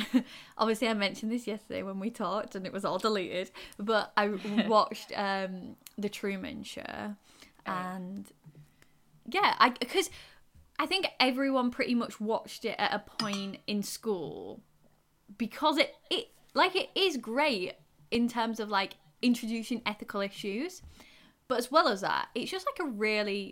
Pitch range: 190-240 Hz